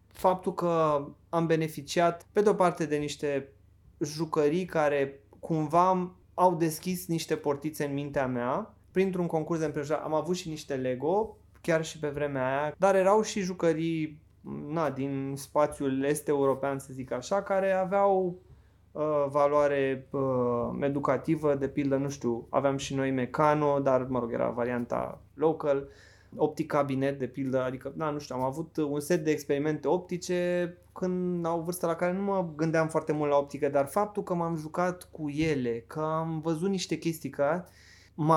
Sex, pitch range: male, 140-175 Hz